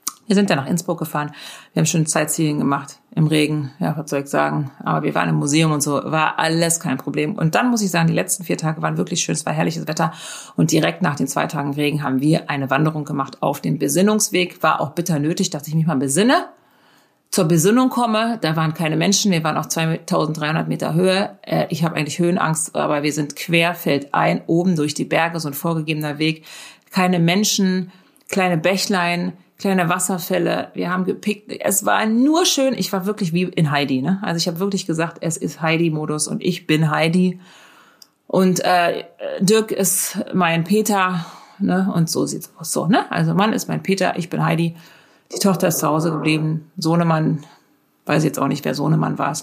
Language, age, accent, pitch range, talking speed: German, 40-59, German, 155-185 Hz, 205 wpm